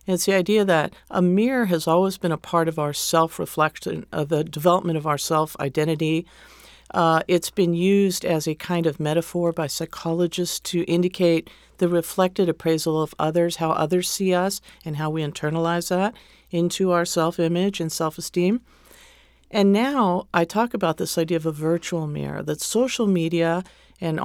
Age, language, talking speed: 50-69, English, 165 wpm